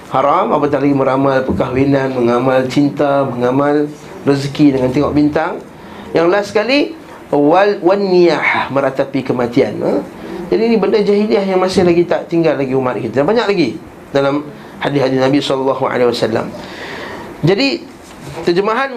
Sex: male